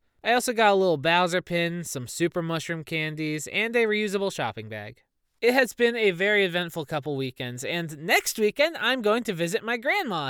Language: English